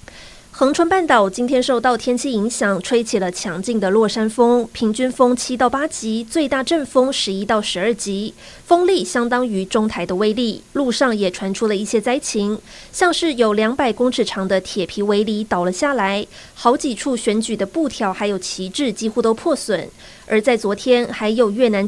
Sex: female